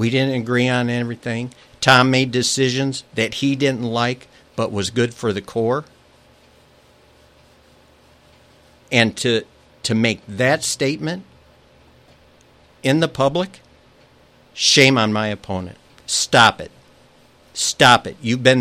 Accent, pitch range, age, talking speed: American, 110-135 Hz, 60-79, 120 wpm